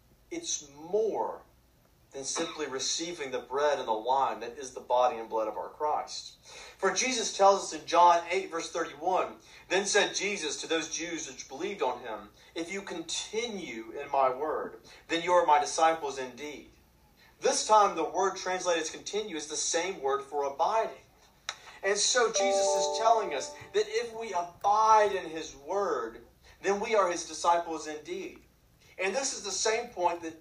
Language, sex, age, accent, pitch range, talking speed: English, male, 40-59, American, 160-245 Hz, 175 wpm